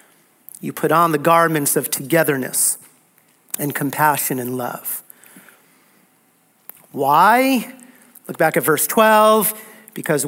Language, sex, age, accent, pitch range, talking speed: English, male, 40-59, American, 165-220 Hz, 105 wpm